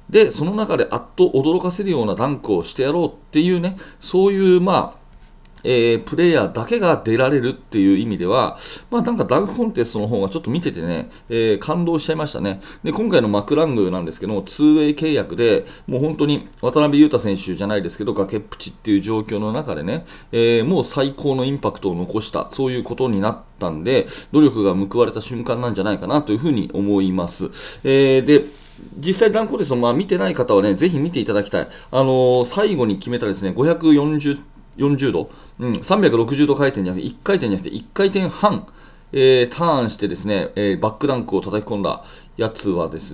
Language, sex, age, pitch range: Japanese, male, 40-59, 100-160 Hz